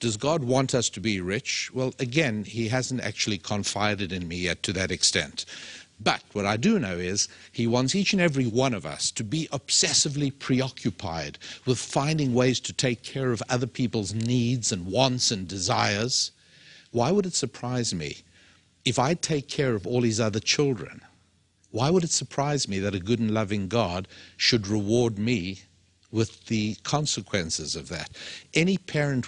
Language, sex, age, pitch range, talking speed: English, male, 60-79, 105-140 Hz, 175 wpm